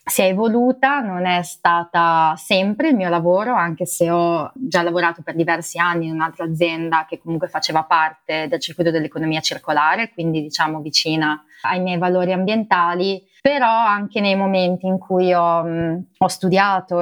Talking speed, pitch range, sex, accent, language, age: 160 wpm, 165-185 Hz, female, native, Italian, 20-39